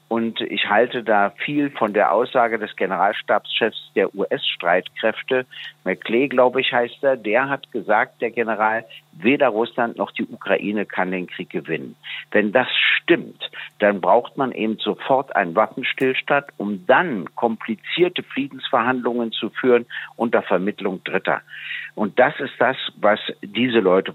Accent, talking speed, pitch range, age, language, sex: German, 140 wpm, 110-140 Hz, 60-79, German, male